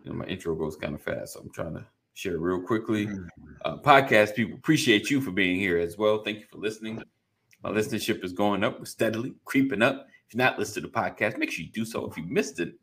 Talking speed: 240 wpm